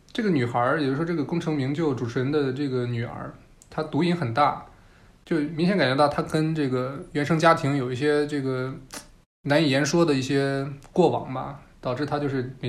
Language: Chinese